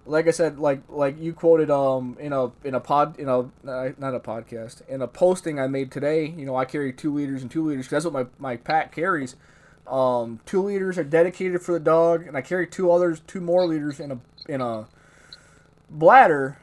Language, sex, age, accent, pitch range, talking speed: English, male, 20-39, American, 130-155 Hz, 220 wpm